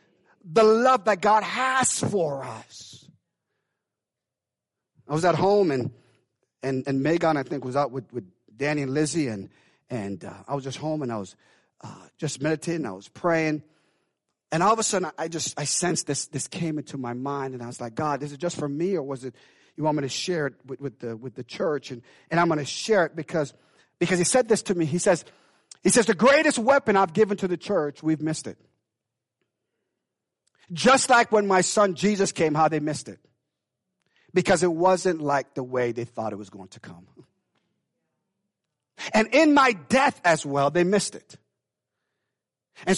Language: English